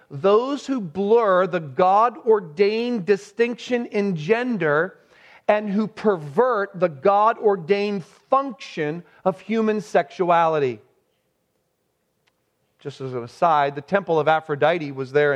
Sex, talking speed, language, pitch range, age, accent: male, 105 wpm, English, 145-200 Hz, 40-59, American